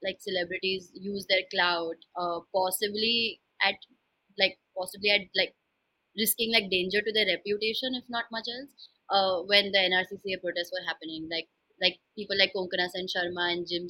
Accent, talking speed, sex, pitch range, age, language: Indian, 165 wpm, female, 175-210 Hz, 20-39, English